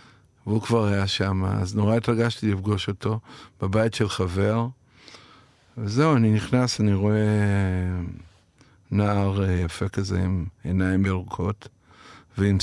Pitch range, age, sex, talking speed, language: 100-120 Hz, 50-69, male, 115 wpm, Hebrew